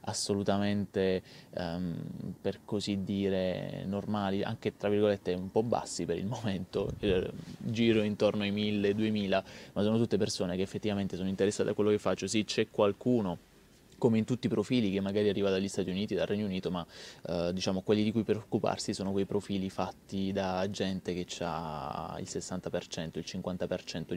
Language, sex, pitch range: Italian, male, 95-110 Hz